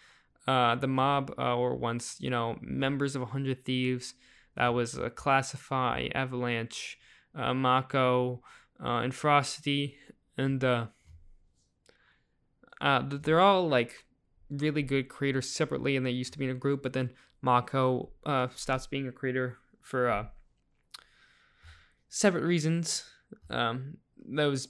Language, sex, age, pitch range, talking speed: English, male, 10-29, 125-140 Hz, 135 wpm